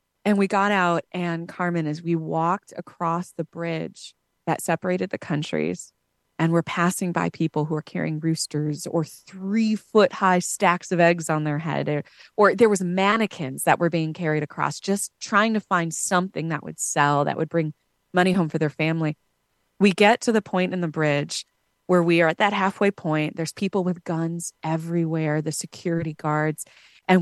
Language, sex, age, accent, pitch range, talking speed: English, female, 20-39, American, 160-190 Hz, 185 wpm